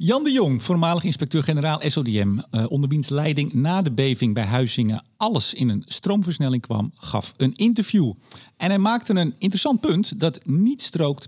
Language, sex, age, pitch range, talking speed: Dutch, male, 50-69, 130-210 Hz, 160 wpm